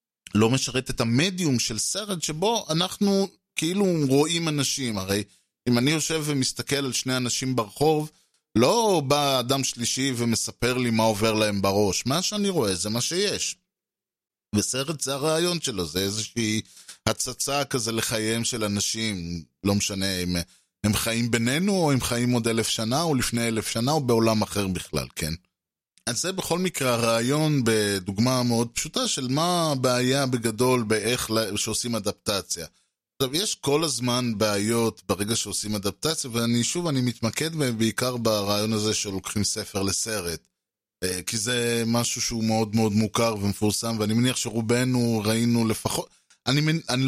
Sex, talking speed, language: male, 150 wpm, Hebrew